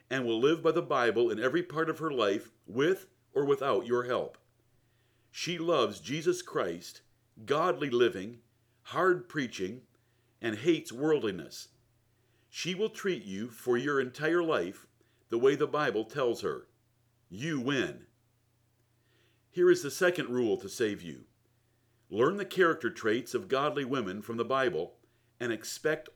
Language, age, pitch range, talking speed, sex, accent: English, 60-79, 120-165 Hz, 145 wpm, male, American